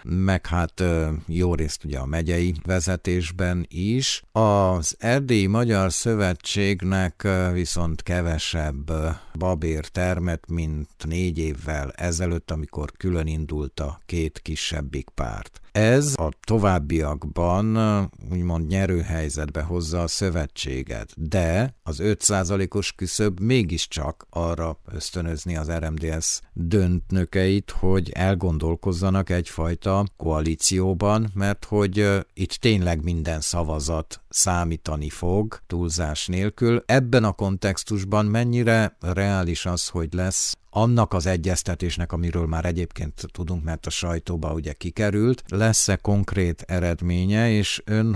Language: Hungarian